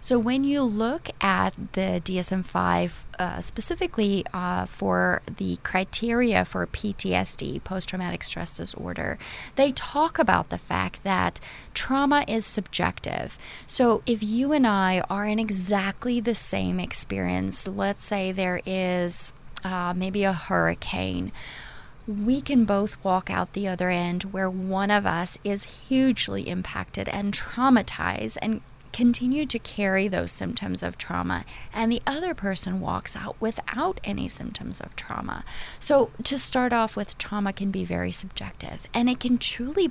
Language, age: English, 30-49